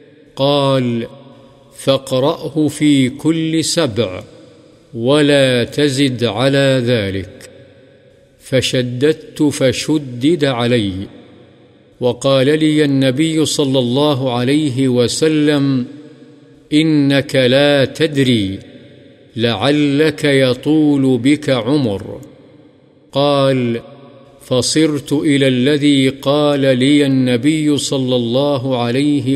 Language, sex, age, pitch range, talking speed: Urdu, male, 50-69, 125-150 Hz, 75 wpm